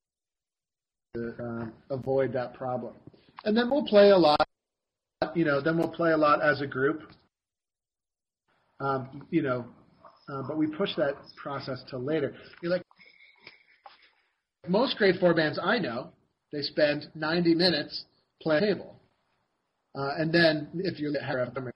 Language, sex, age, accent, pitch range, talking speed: English, male, 40-59, American, 130-160 Hz, 145 wpm